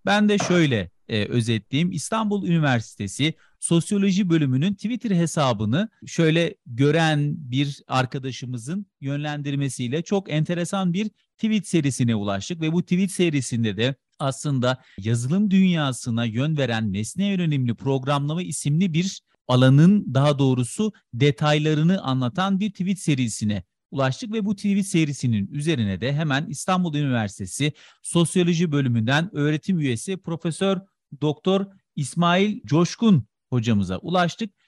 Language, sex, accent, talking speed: Turkish, male, native, 110 wpm